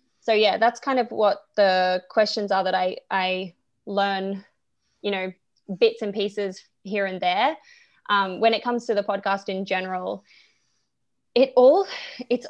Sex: female